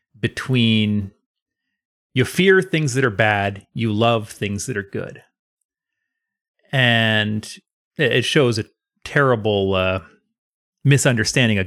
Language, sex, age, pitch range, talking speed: English, male, 30-49, 105-140 Hz, 110 wpm